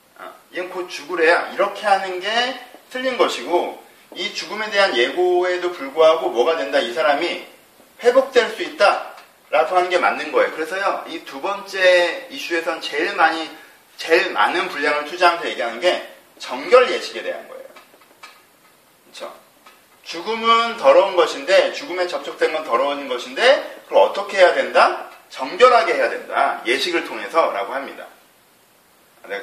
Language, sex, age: Korean, male, 40-59